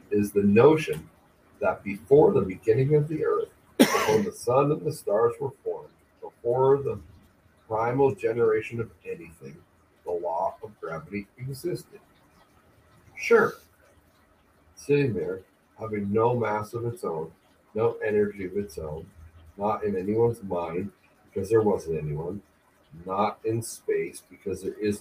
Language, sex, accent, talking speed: English, male, American, 135 wpm